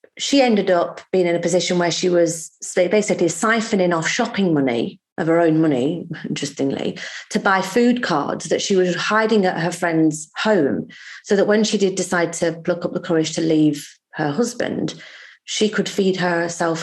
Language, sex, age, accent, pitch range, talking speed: English, female, 30-49, British, 155-215 Hz, 180 wpm